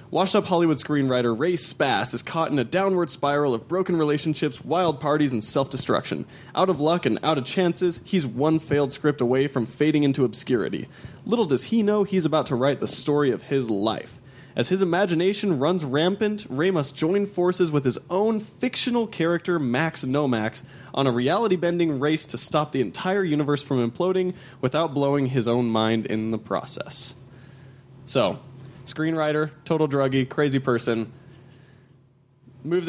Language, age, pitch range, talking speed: English, 20-39, 130-160 Hz, 160 wpm